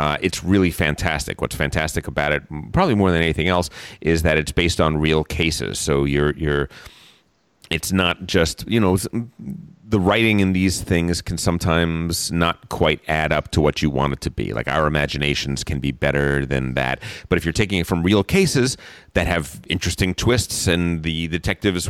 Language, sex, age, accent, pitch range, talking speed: English, male, 30-49, American, 80-105 Hz, 190 wpm